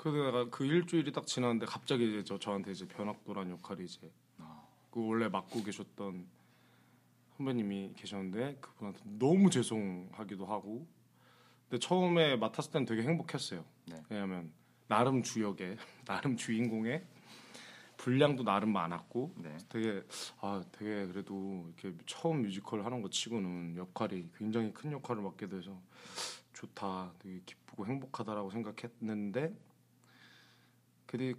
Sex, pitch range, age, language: male, 95-120 Hz, 20-39, Korean